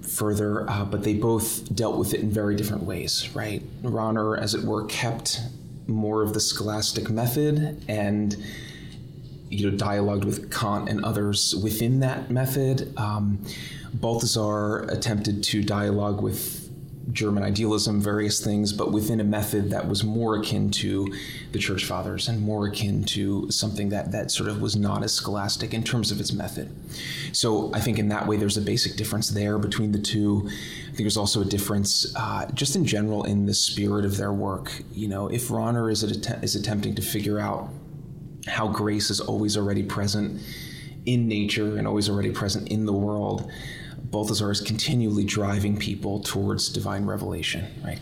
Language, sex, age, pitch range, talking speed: English, male, 20-39, 105-115 Hz, 175 wpm